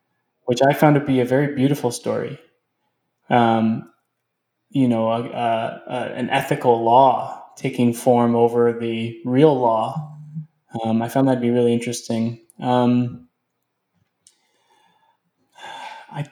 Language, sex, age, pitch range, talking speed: English, male, 10-29, 120-135 Hz, 120 wpm